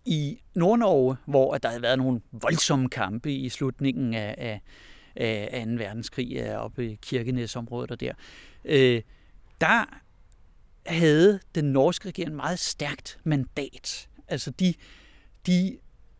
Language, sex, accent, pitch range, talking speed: Danish, male, native, 125-180 Hz, 120 wpm